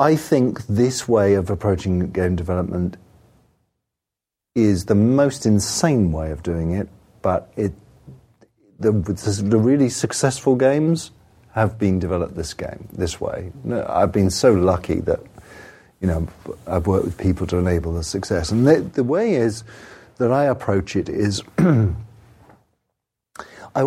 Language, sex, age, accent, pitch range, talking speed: English, male, 40-59, British, 100-130 Hz, 140 wpm